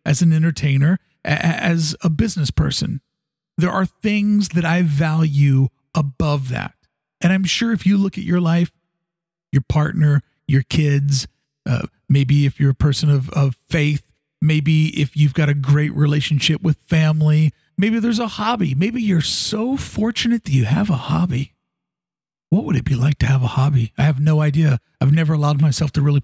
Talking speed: 180 wpm